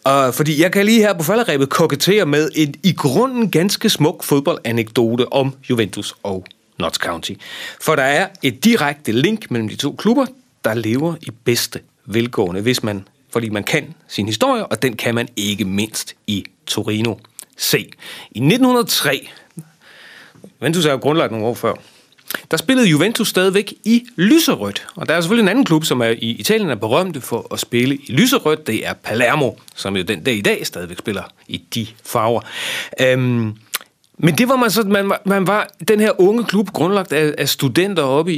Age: 40-59